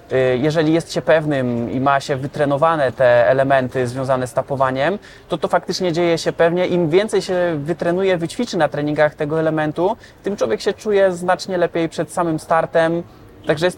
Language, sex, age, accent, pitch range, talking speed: Polish, male, 20-39, native, 155-180 Hz, 170 wpm